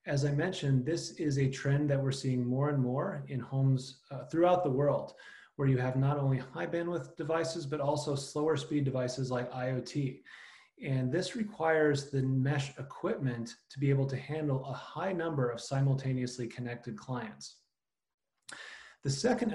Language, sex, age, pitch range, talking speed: English, male, 30-49, 130-150 Hz, 165 wpm